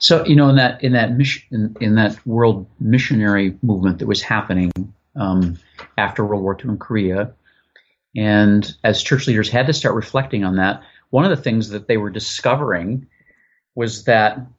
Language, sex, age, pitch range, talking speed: English, male, 40-59, 100-130 Hz, 175 wpm